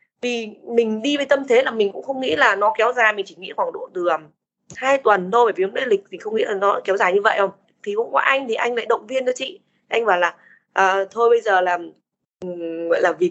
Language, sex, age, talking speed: Vietnamese, female, 20-39, 275 wpm